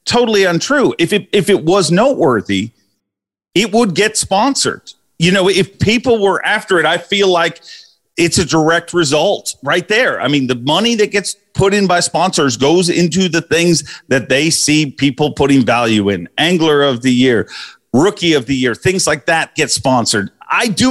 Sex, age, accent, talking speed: male, 40-59, American, 180 wpm